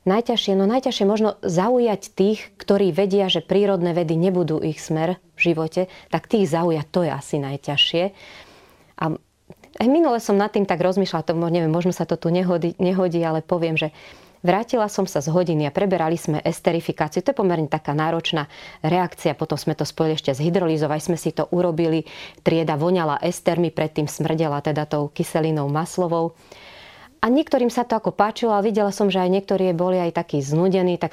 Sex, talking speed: female, 180 wpm